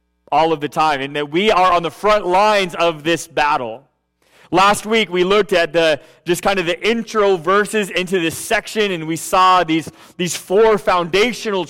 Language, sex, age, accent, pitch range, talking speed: English, male, 30-49, American, 165-200 Hz, 190 wpm